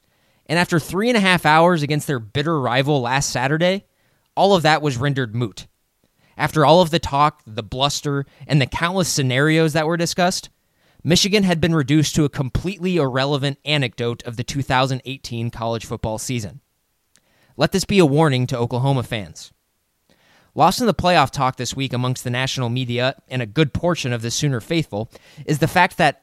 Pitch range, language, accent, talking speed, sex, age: 125-170 Hz, English, American, 180 wpm, male, 20-39